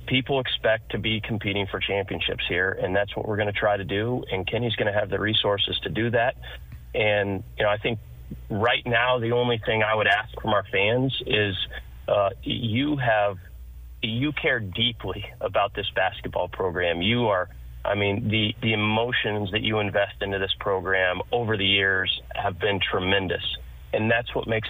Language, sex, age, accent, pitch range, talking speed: English, male, 30-49, American, 95-115 Hz, 185 wpm